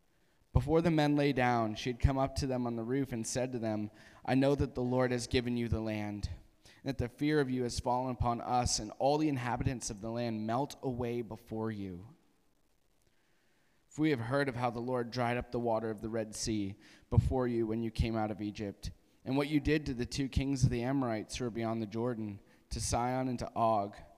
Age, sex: 20-39, male